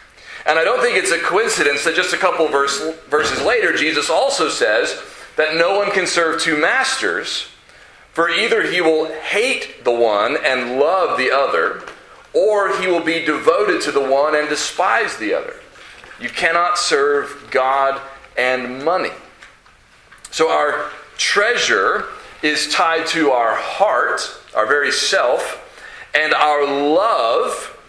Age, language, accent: 40-59, English, American